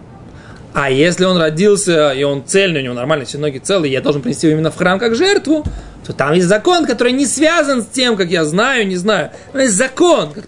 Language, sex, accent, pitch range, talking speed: Russian, male, native, 170-255 Hz, 230 wpm